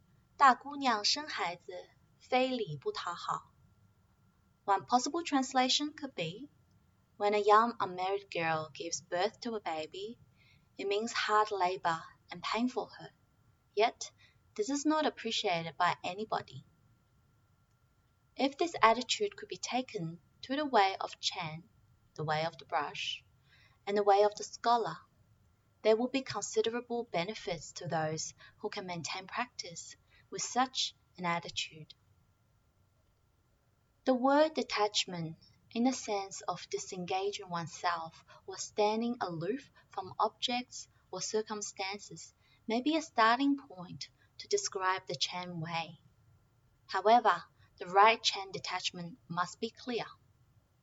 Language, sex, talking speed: English, female, 120 wpm